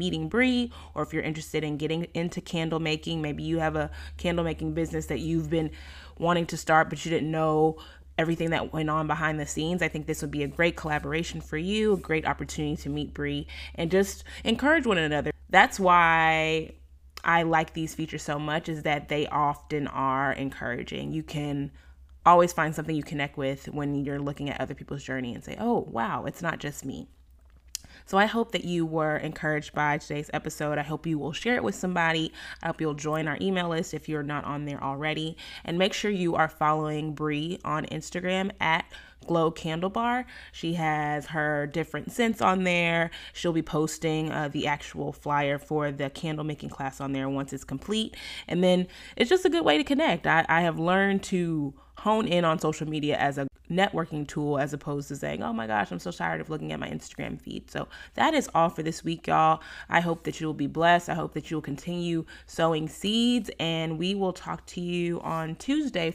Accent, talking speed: American, 210 wpm